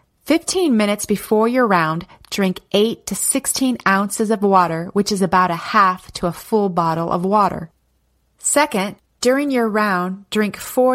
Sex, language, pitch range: female, English, 185-230 Hz